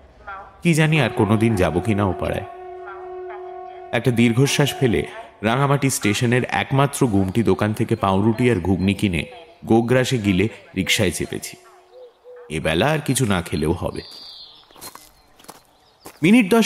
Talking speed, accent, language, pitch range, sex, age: 110 wpm, Indian, English, 105-150 Hz, male, 30-49